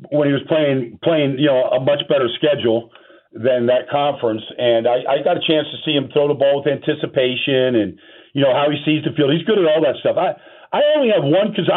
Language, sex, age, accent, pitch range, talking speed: English, male, 50-69, American, 145-180 Hz, 245 wpm